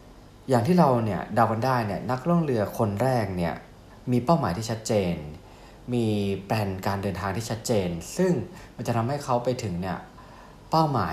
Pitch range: 95-125 Hz